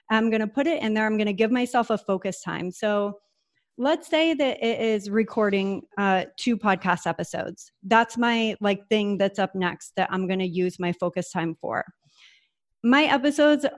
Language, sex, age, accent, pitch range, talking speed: English, female, 30-49, American, 200-260 Hz, 180 wpm